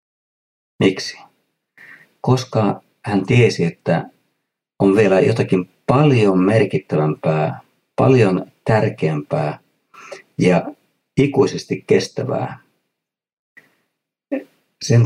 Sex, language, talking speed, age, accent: male, Finnish, 65 wpm, 50-69, native